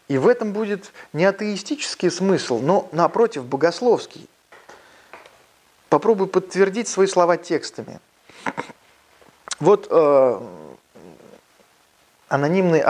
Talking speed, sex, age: 85 wpm, male, 20-39